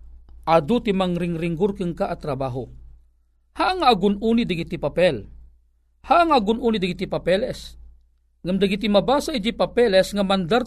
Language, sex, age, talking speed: Filipino, male, 40-59, 125 wpm